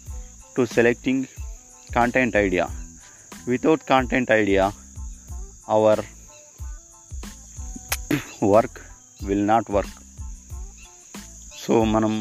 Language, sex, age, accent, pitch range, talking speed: Telugu, male, 30-49, native, 90-115 Hz, 70 wpm